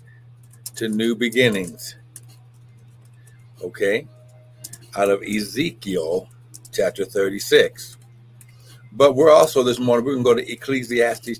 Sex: male